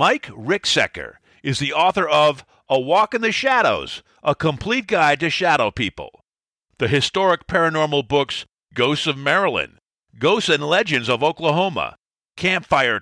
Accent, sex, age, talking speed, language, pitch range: American, male, 50-69, 140 wpm, English, 145-200 Hz